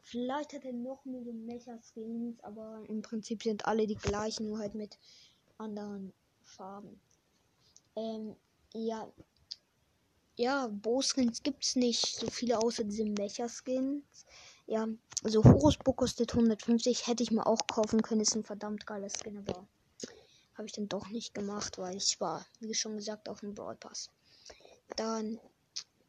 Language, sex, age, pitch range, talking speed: German, female, 20-39, 215-235 Hz, 145 wpm